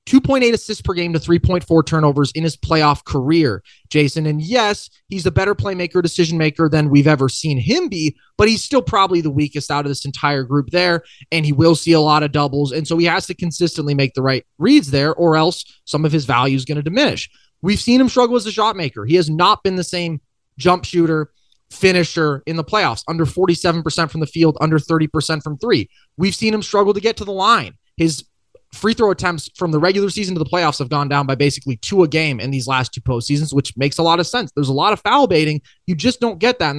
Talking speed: 240 wpm